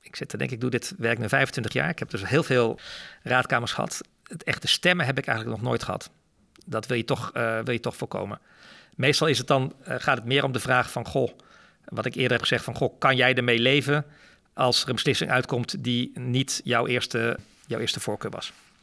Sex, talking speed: male, 235 wpm